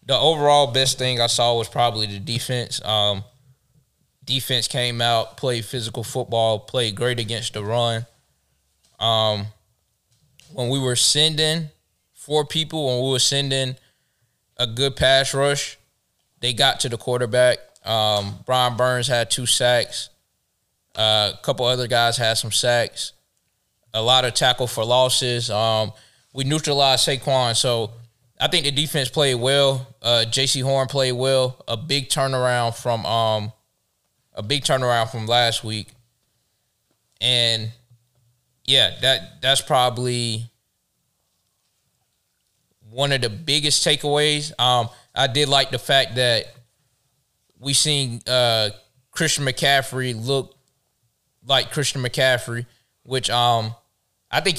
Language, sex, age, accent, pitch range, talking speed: English, male, 20-39, American, 115-135 Hz, 130 wpm